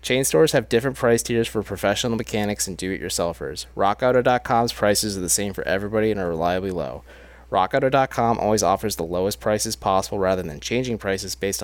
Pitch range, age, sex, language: 95-120 Hz, 20-39, male, English